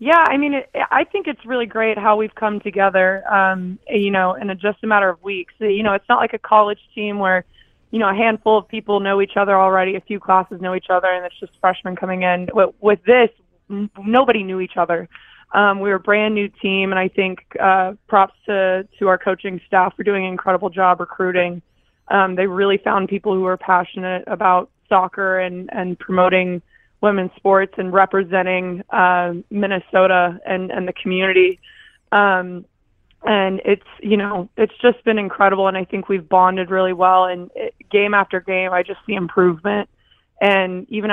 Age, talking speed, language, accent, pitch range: 20-39, 195 wpm, English, American, 185-205 Hz